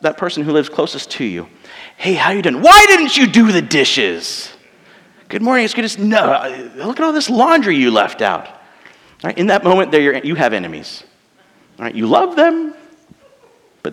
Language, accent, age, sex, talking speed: English, American, 40-59, male, 200 wpm